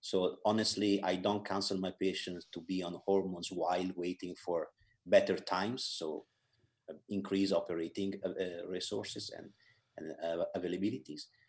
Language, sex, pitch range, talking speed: English, male, 95-115 Hz, 140 wpm